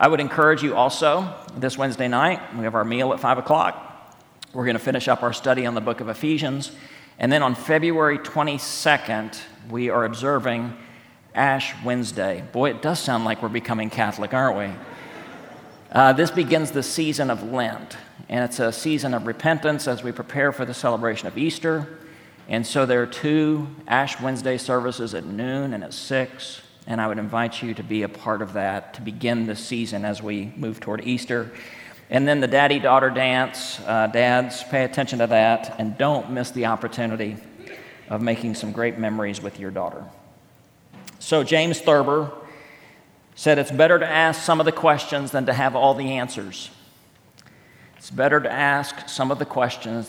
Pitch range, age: 115-145 Hz, 40-59